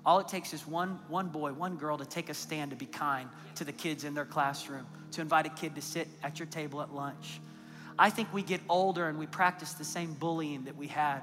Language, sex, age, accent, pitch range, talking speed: English, male, 30-49, American, 155-195 Hz, 250 wpm